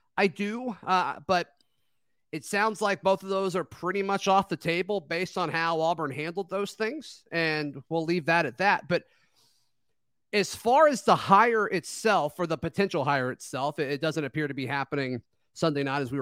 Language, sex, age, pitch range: English, male, 30-49, 145-190 Hz